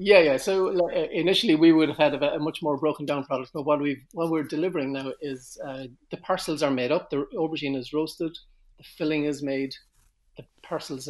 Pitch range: 130-155 Hz